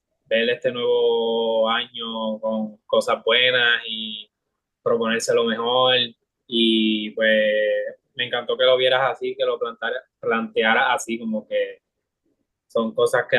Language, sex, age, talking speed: Spanish, male, 20-39, 130 wpm